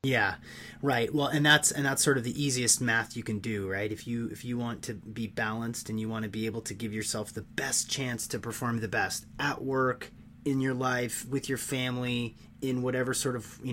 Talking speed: 230 wpm